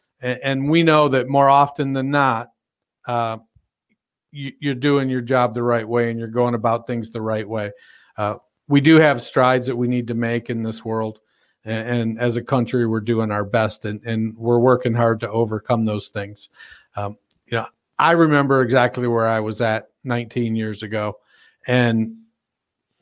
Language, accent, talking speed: English, American, 180 wpm